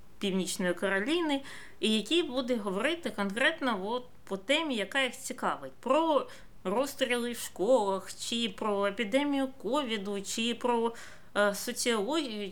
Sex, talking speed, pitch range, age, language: female, 110 wpm, 185-245 Hz, 20-39, Ukrainian